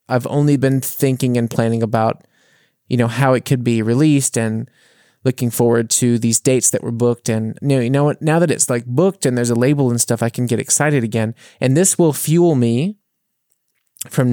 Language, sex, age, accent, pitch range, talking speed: English, male, 20-39, American, 115-135 Hz, 220 wpm